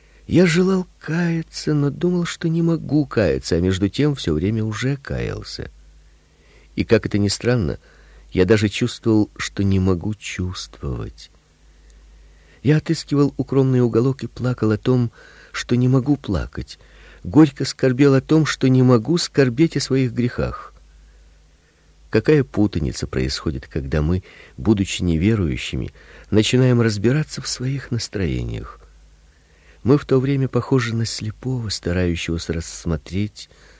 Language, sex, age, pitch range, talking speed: Russian, male, 50-69, 80-135 Hz, 130 wpm